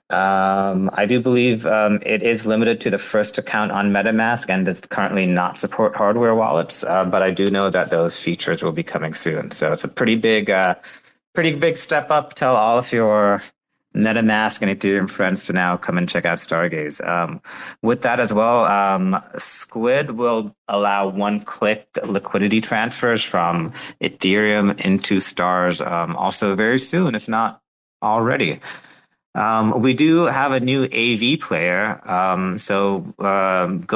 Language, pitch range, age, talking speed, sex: English, 95-115 Hz, 30-49, 165 wpm, male